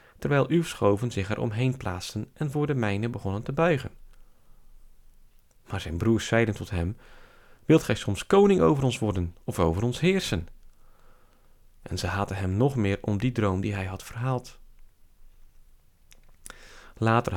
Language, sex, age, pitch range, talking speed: Dutch, male, 40-59, 95-135 Hz, 155 wpm